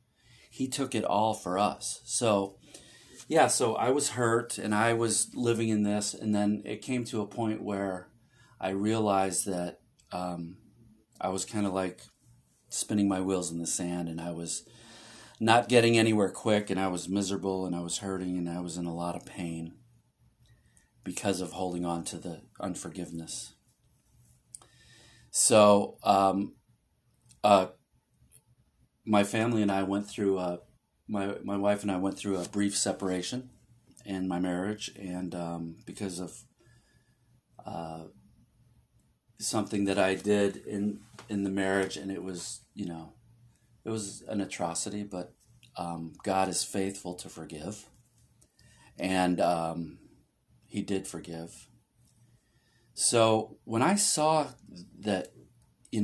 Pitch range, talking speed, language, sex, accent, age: 90-110 Hz, 145 wpm, English, male, American, 40-59